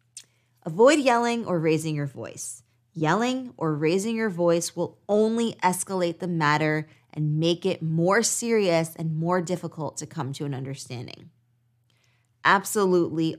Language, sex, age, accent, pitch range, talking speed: English, female, 20-39, American, 145-185 Hz, 135 wpm